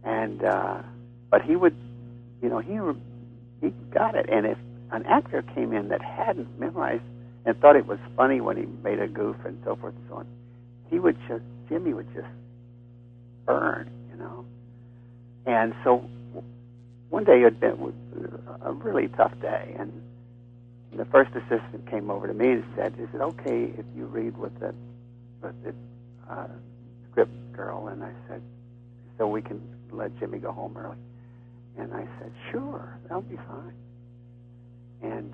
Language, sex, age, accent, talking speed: English, male, 60-79, American, 165 wpm